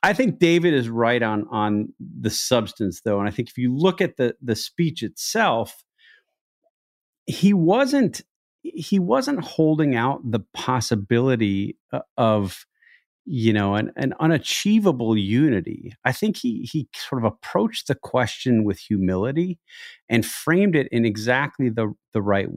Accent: American